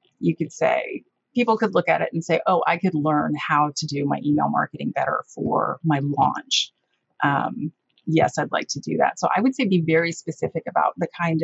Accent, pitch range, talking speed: American, 160-210 Hz, 215 wpm